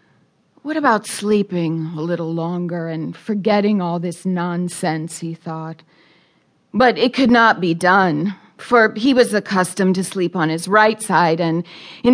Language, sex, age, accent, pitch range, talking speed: English, female, 40-59, American, 180-245 Hz, 155 wpm